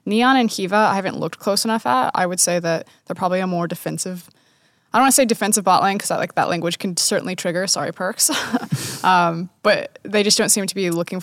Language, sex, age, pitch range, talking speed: English, female, 20-39, 170-210 Hz, 235 wpm